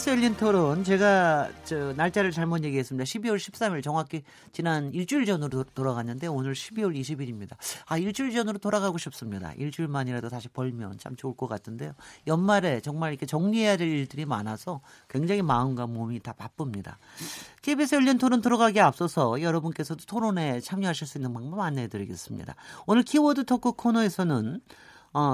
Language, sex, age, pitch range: Korean, male, 40-59, 130-195 Hz